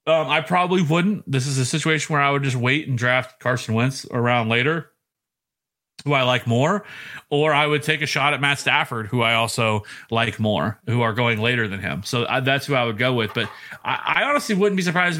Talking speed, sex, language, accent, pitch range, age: 230 wpm, male, English, American, 125-160 Hz, 30-49